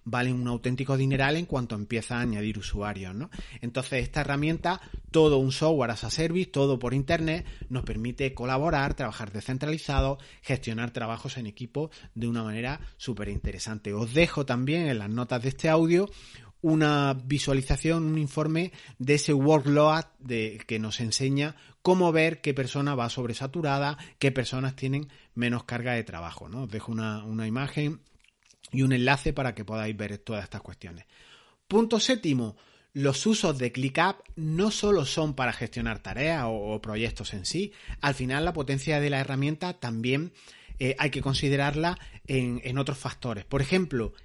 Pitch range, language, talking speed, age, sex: 115-150 Hz, Spanish, 165 wpm, 30-49, male